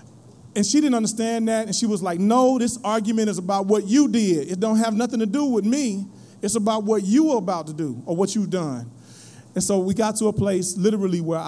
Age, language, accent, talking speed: 30-49, English, American, 240 wpm